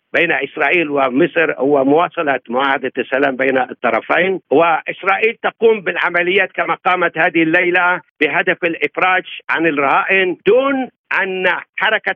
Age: 60-79